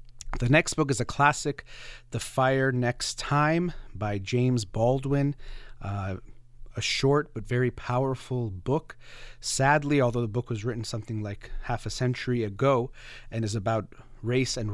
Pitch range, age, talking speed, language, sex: 110-130 Hz, 30-49, 150 wpm, English, male